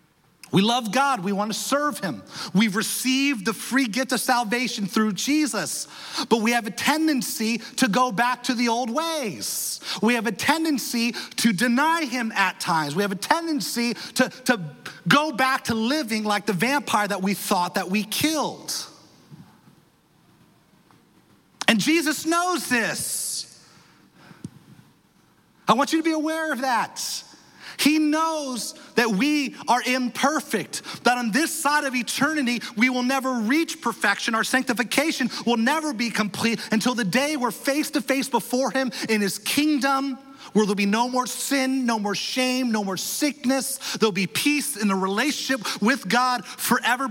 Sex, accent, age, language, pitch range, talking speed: male, American, 30-49, English, 220-275 Hz, 160 wpm